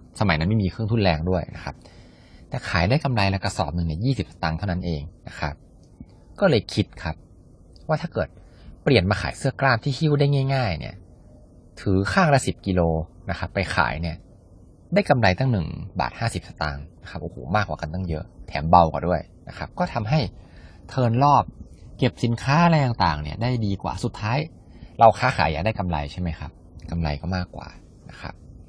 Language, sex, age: English, male, 20-39